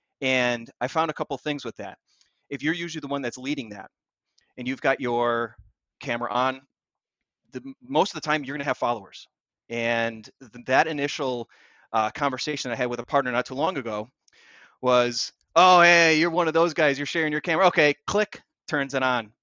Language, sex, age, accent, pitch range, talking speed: English, male, 30-49, American, 120-145 Hz, 190 wpm